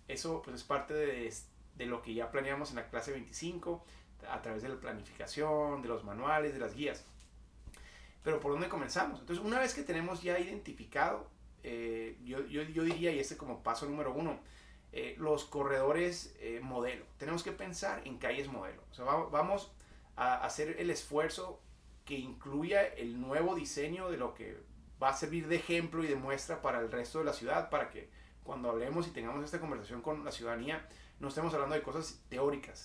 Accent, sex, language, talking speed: Mexican, male, Spanish, 190 wpm